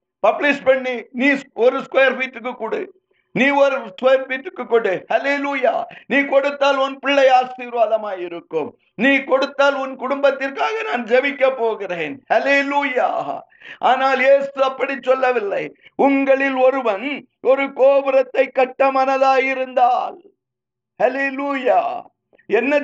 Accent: native